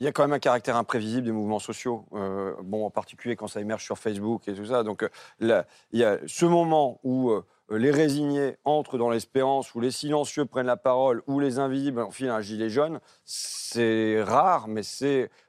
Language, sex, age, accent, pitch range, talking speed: French, male, 40-59, French, 120-150 Hz, 210 wpm